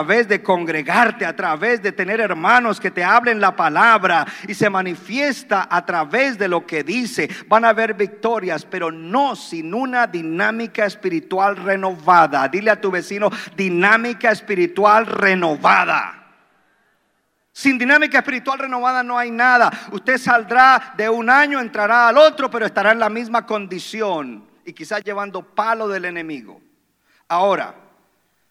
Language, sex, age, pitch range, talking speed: Spanish, male, 50-69, 175-230 Hz, 145 wpm